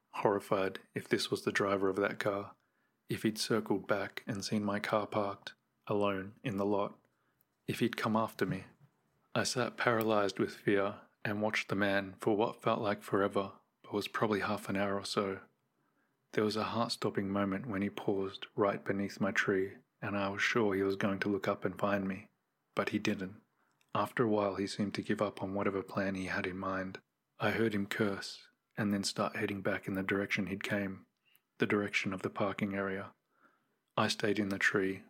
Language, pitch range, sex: English, 100-105 Hz, male